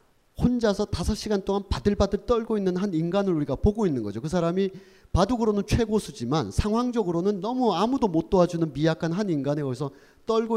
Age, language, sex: 40-59, Korean, male